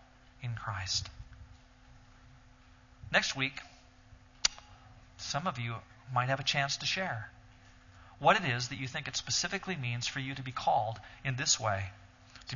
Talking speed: 150 wpm